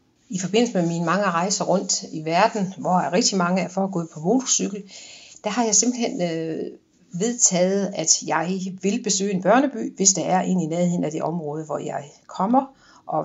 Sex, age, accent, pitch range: female, 60-79, native, 165-210 Hz